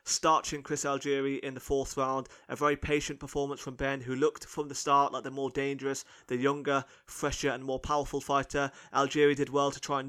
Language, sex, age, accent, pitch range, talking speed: English, male, 20-39, British, 135-145 Hz, 210 wpm